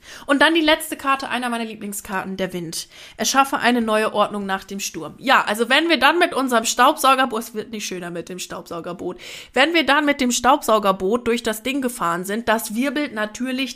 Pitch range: 205-255 Hz